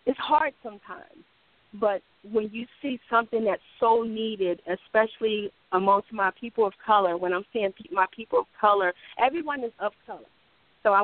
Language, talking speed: English, 165 wpm